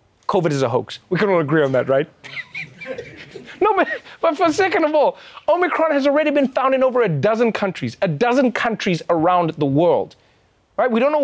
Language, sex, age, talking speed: English, male, 30-49, 205 wpm